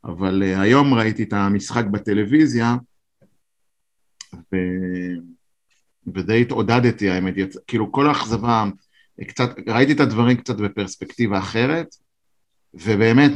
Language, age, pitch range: Hebrew, 50-69, 100-130 Hz